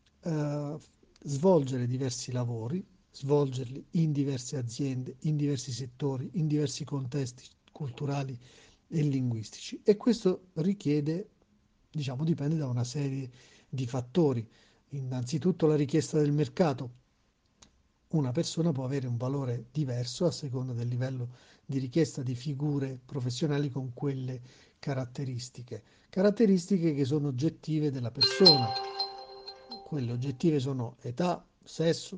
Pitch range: 130-155 Hz